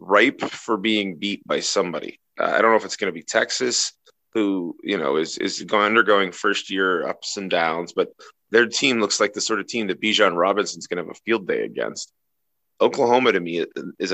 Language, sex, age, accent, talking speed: English, male, 30-49, American, 215 wpm